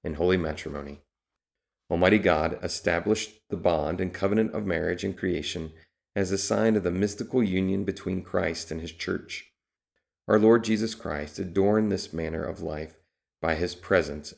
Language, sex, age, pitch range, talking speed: English, male, 40-59, 80-100 Hz, 160 wpm